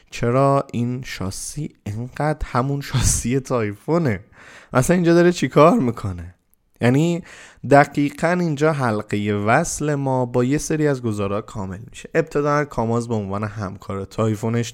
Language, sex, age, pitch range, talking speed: Persian, male, 20-39, 110-155 Hz, 125 wpm